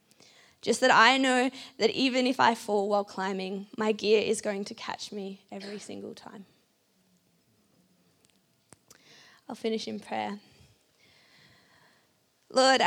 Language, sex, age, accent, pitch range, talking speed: English, female, 20-39, Australian, 205-235 Hz, 120 wpm